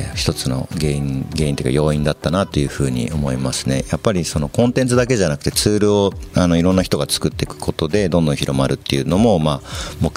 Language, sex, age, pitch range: Japanese, male, 50-69, 70-95 Hz